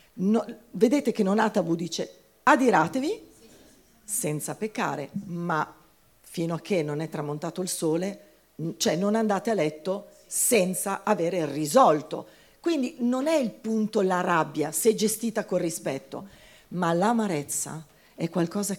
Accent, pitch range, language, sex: native, 160-220 Hz, Italian, female